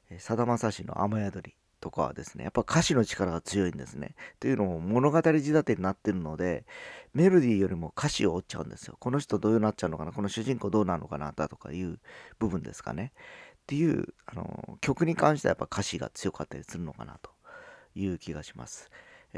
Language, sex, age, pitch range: Japanese, male, 40-59, 90-120 Hz